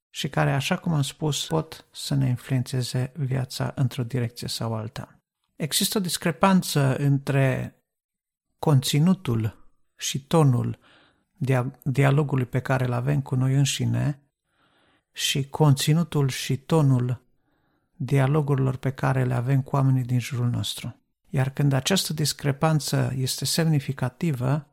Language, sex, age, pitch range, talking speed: Romanian, male, 50-69, 130-150 Hz, 120 wpm